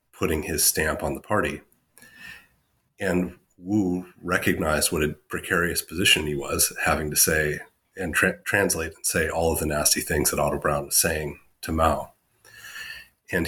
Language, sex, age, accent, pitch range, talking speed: English, male, 30-49, American, 75-90 Hz, 160 wpm